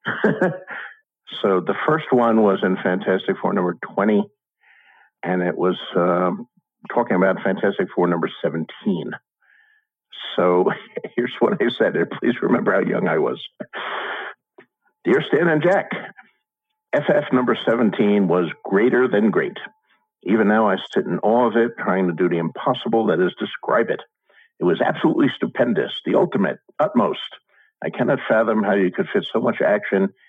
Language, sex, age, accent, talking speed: English, male, 50-69, American, 150 wpm